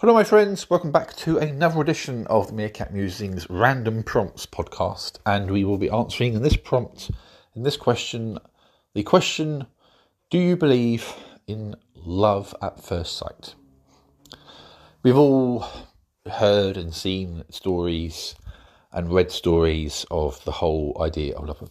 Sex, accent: male, British